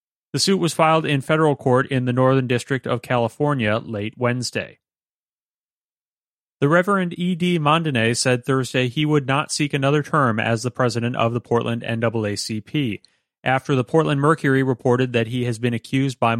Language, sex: English, male